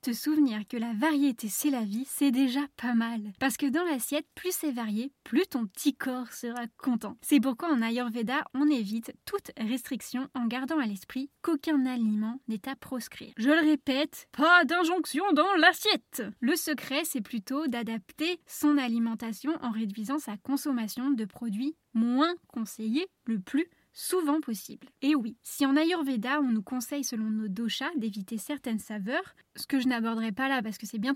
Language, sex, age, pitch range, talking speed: French, female, 10-29, 225-290 Hz, 175 wpm